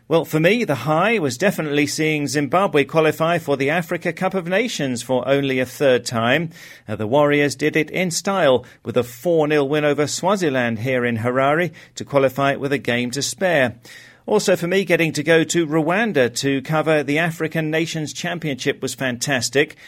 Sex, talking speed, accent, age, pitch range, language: male, 180 wpm, British, 40-59, 130-160 Hz, English